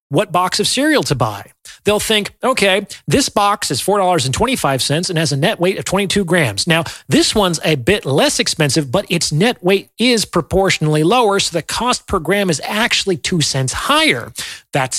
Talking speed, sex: 185 wpm, male